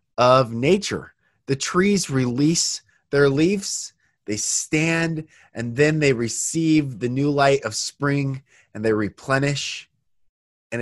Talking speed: 120 wpm